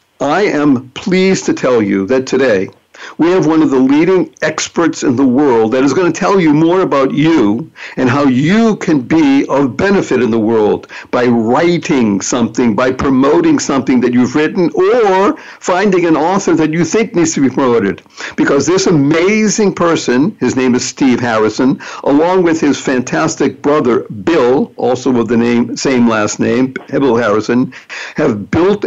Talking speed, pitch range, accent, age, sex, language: 170 wpm, 125-195 Hz, American, 60-79, male, English